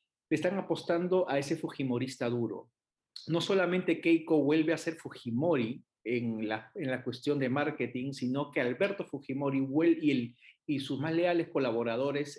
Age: 40-59